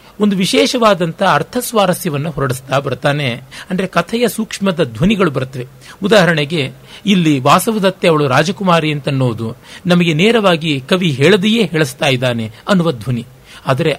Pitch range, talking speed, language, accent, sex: 145-200 Hz, 105 wpm, Kannada, native, male